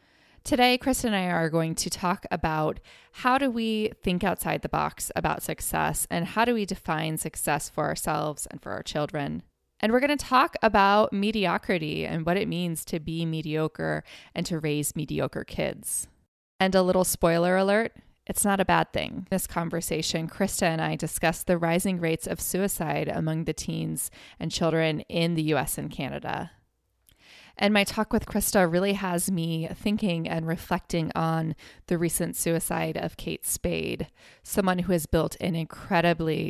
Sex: female